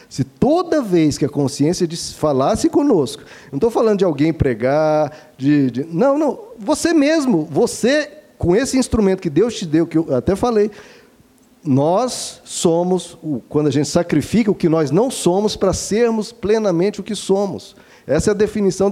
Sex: male